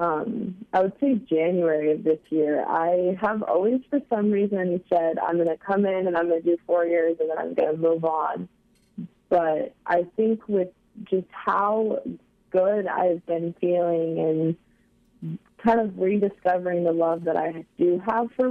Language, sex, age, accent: English, female, 20-39, American